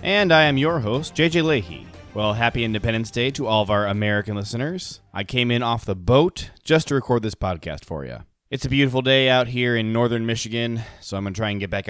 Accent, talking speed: American, 235 wpm